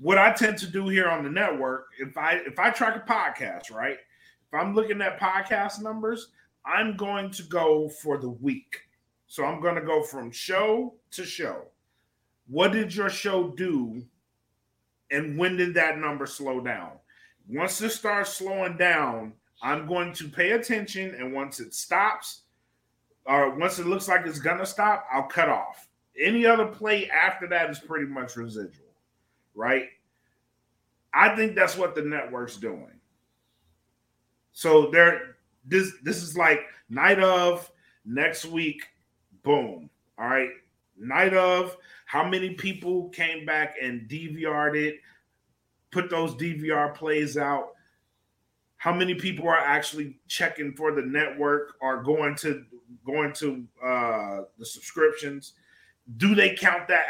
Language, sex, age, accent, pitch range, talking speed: English, male, 30-49, American, 145-190 Hz, 150 wpm